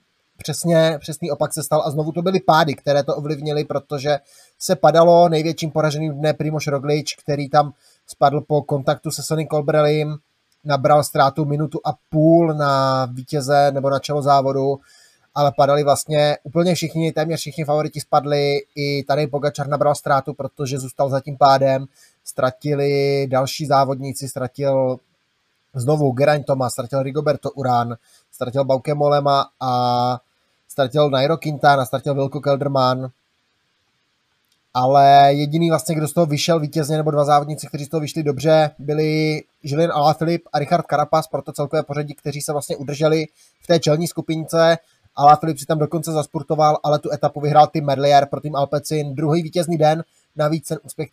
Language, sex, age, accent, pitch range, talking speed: Czech, male, 20-39, native, 140-155 Hz, 155 wpm